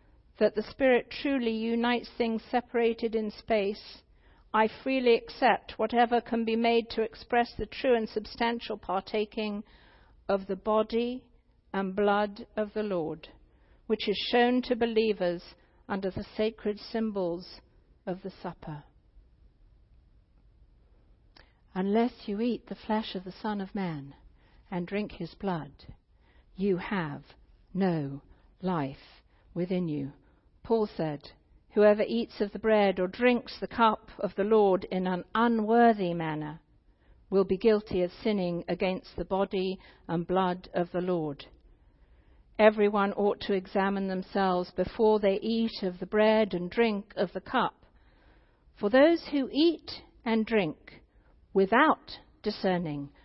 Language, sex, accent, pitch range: English, female, British, 185-225 Hz